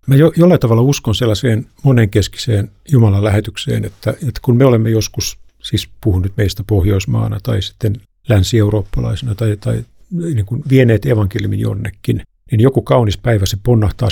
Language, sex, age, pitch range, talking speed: Finnish, male, 50-69, 100-120 Hz, 150 wpm